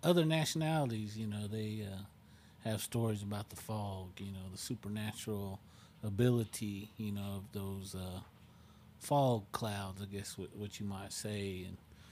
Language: English